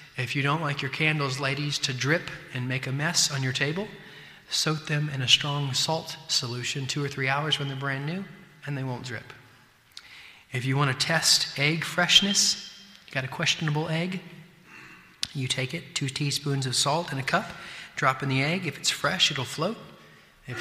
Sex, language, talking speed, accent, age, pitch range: male, English, 195 wpm, American, 30-49, 130-165 Hz